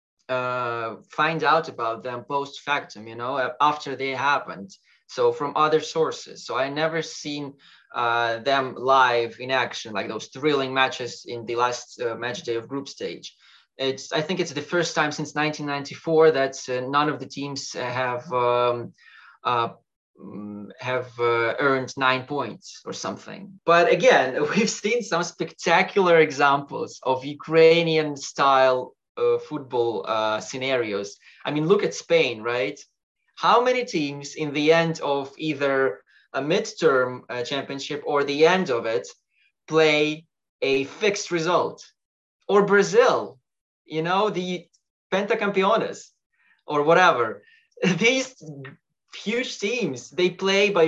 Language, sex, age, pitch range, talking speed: English, male, 20-39, 130-175 Hz, 135 wpm